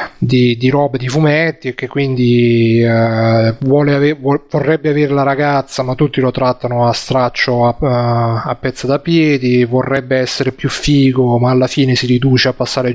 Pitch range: 125-145 Hz